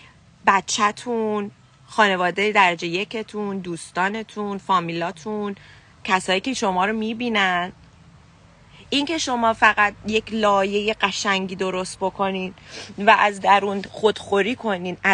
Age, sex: 30-49, female